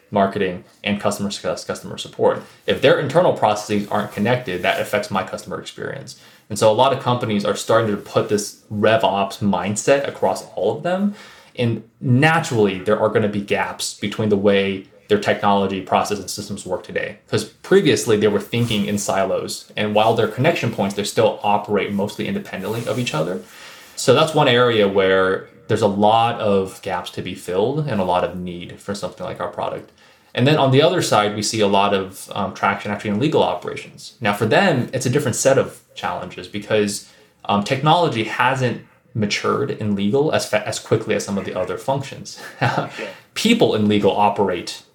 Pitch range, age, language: 100-125 Hz, 20-39, English